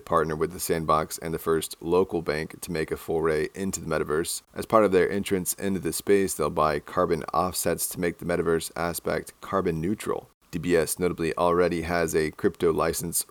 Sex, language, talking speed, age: male, English, 190 wpm, 30-49